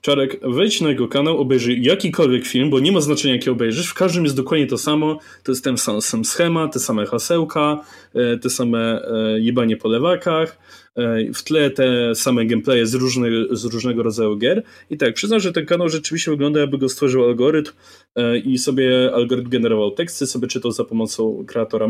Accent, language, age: native, Polish, 20-39